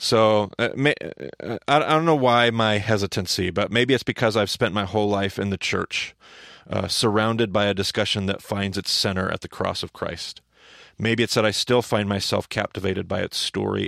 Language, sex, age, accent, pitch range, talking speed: English, male, 40-59, American, 95-110 Hz, 195 wpm